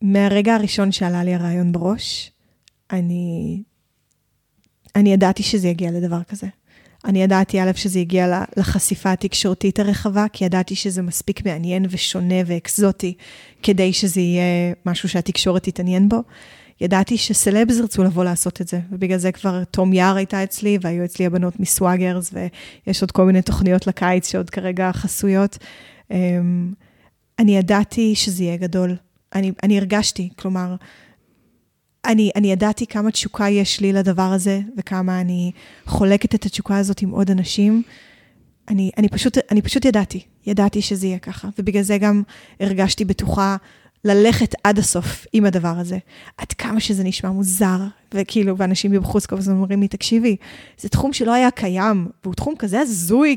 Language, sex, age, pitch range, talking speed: Hebrew, female, 20-39, 185-205 Hz, 150 wpm